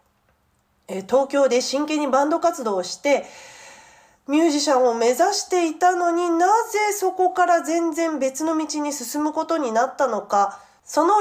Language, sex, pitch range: Japanese, female, 215-345 Hz